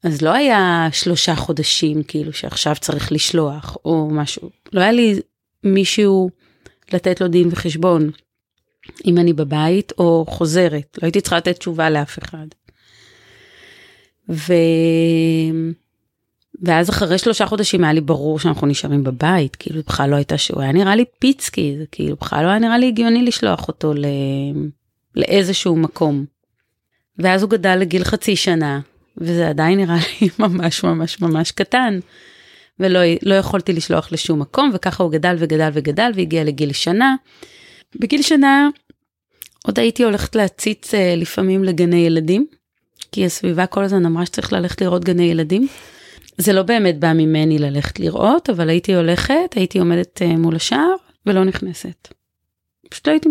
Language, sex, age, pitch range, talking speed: Hebrew, female, 30-49, 160-205 Hz, 145 wpm